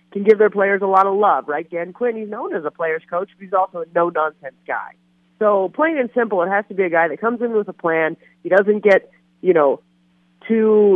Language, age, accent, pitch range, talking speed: English, 30-49, American, 160-225 Hz, 245 wpm